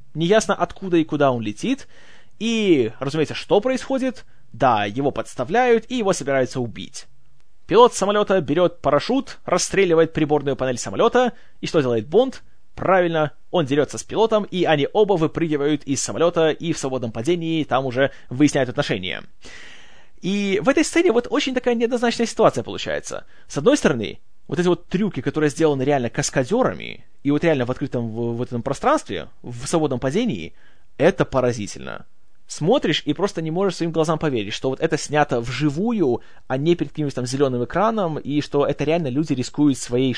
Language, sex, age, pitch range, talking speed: Russian, male, 20-39, 135-190 Hz, 160 wpm